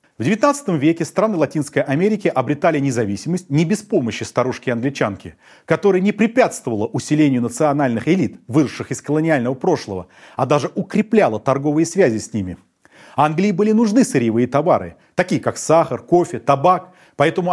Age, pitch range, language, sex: 30-49, 120-175 Hz, Russian, male